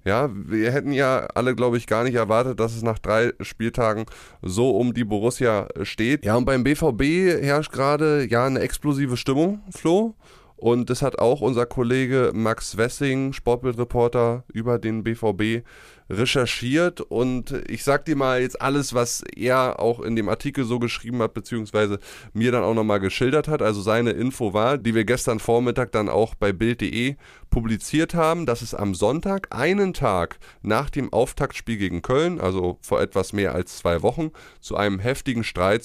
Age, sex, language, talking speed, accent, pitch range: 20-39, male, German, 170 wpm, German, 110-145 Hz